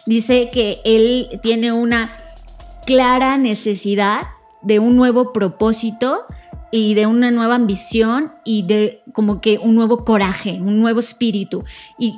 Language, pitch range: Spanish, 205-245 Hz